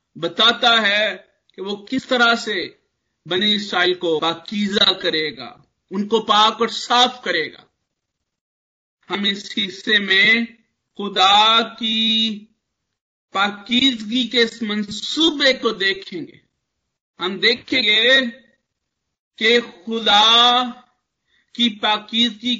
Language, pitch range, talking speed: Hindi, 215-255 Hz, 95 wpm